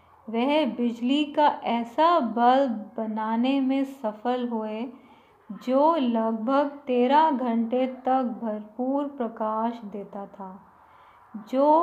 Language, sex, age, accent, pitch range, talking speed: Hindi, female, 20-39, native, 225-280 Hz, 95 wpm